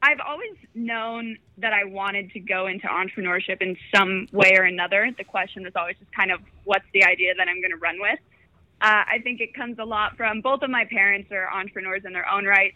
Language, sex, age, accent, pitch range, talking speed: English, female, 20-39, American, 195-230 Hz, 230 wpm